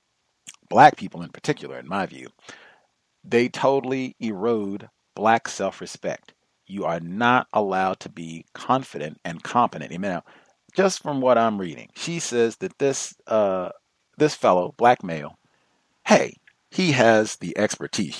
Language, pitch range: English, 115-180 Hz